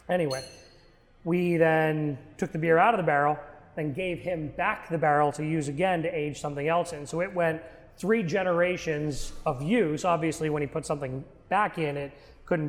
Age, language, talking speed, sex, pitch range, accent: 30-49, English, 190 wpm, male, 150-175 Hz, American